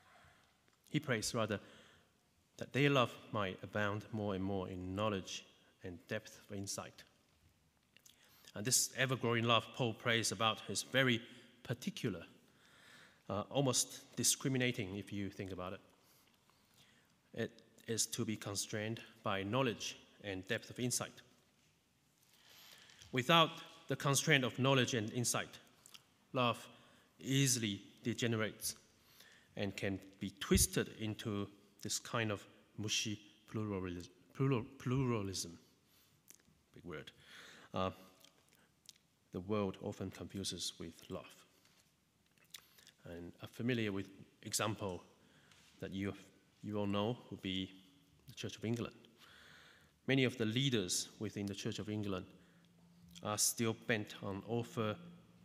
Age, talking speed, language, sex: 30-49, 115 wpm, English, male